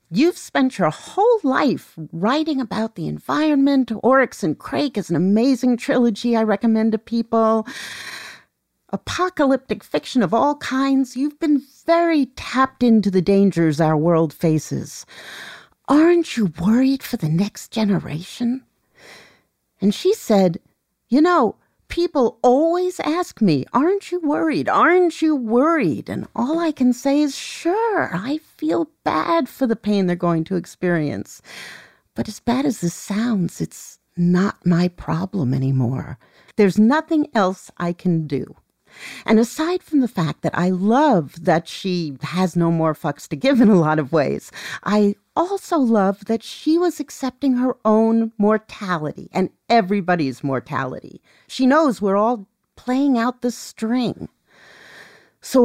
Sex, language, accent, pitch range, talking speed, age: female, English, American, 165-270 Hz, 145 wpm, 50-69